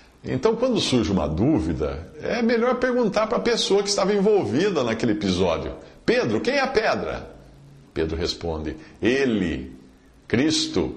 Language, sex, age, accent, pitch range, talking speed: Portuguese, male, 50-69, Brazilian, 90-145 Hz, 135 wpm